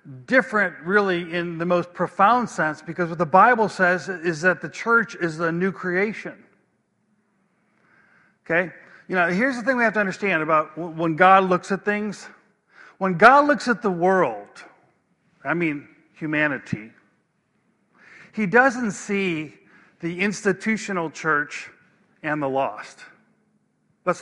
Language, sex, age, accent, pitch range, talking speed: English, male, 50-69, American, 165-210 Hz, 135 wpm